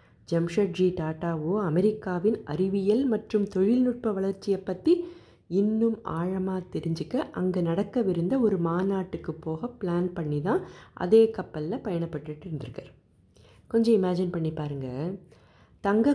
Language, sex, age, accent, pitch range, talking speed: Tamil, female, 30-49, native, 160-200 Hz, 105 wpm